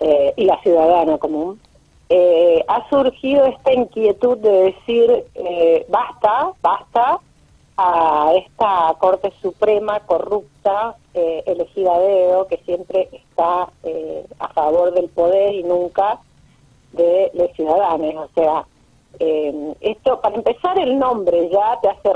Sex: female